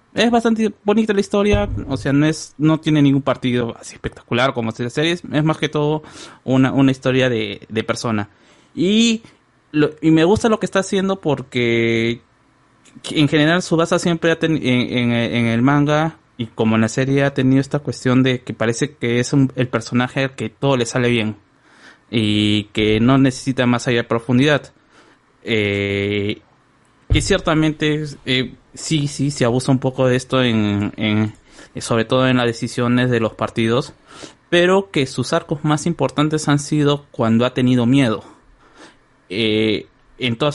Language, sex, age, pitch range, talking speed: Spanish, male, 20-39, 115-145 Hz, 175 wpm